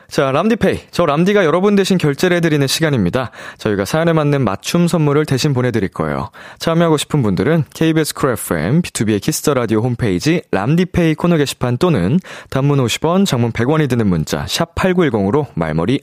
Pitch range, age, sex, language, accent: 125-185 Hz, 20-39, male, Korean, native